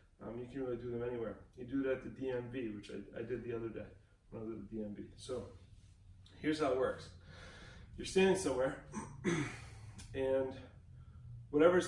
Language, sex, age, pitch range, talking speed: English, male, 20-39, 95-125 Hz, 170 wpm